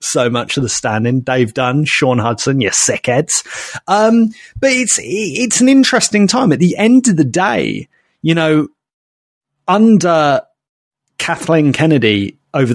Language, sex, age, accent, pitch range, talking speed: English, male, 30-49, British, 125-160 Hz, 145 wpm